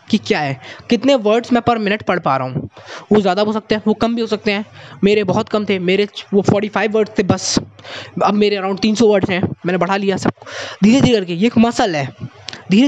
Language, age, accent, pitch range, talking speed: Hindi, 20-39, native, 150-225 Hz, 240 wpm